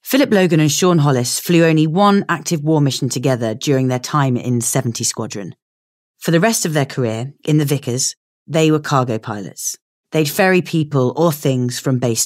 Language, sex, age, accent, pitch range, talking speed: English, female, 30-49, British, 125-170 Hz, 185 wpm